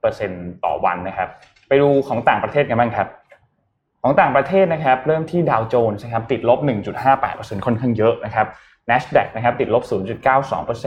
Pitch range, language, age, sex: 110-145 Hz, Thai, 20-39, male